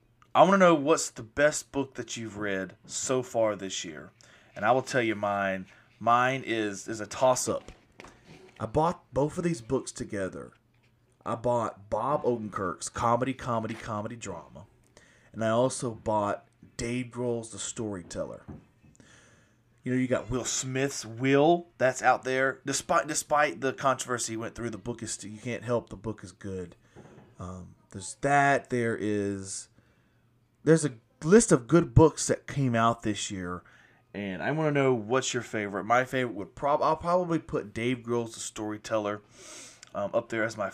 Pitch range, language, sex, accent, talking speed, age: 105-130 Hz, English, male, American, 170 wpm, 30-49